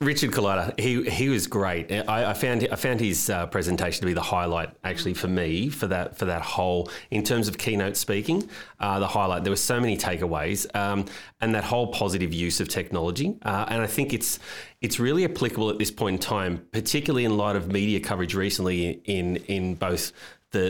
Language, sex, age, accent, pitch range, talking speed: English, male, 30-49, Australian, 90-110 Hz, 210 wpm